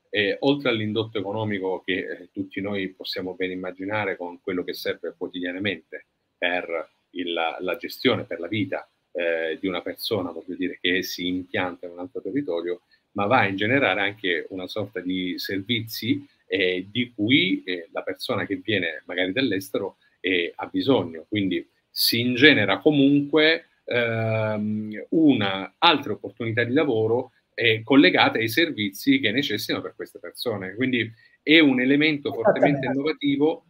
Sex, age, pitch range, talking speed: male, 40-59, 95-135 Hz, 150 wpm